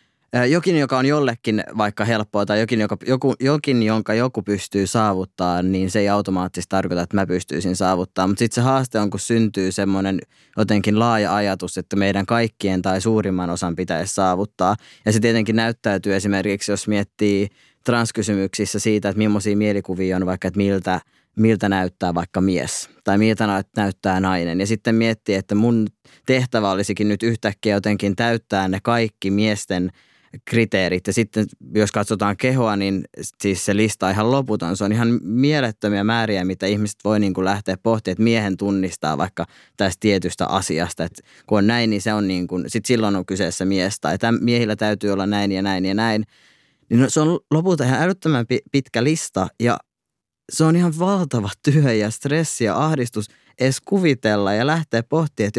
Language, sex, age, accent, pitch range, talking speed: Finnish, male, 20-39, native, 95-115 Hz, 170 wpm